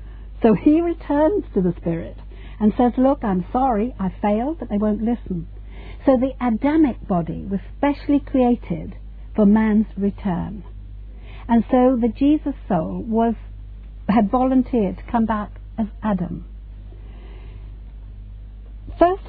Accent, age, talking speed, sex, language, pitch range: British, 60-79, 130 wpm, female, English, 175-265 Hz